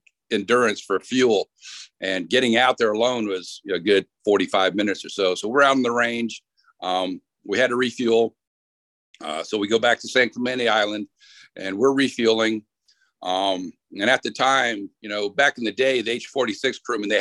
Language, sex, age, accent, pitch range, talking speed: English, male, 50-69, American, 110-160 Hz, 185 wpm